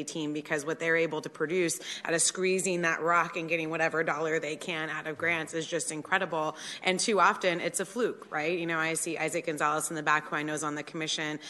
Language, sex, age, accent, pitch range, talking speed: English, female, 20-39, American, 155-170 Hz, 245 wpm